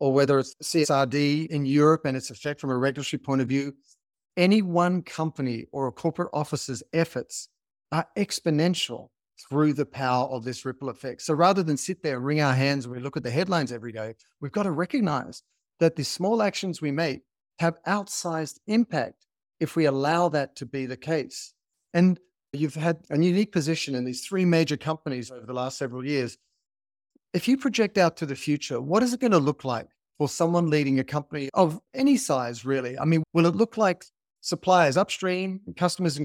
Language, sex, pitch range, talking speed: English, male, 135-170 Hz, 195 wpm